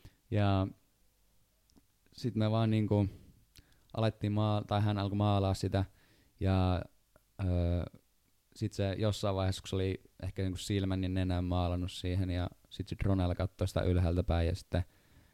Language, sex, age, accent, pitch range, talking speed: Finnish, male, 20-39, native, 90-100 Hz, 115 wpm